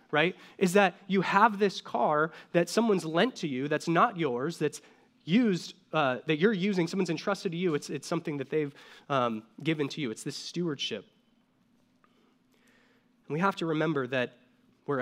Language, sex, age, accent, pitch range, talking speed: English, male, 20-39, American, 155-230 Hz, 175 wpm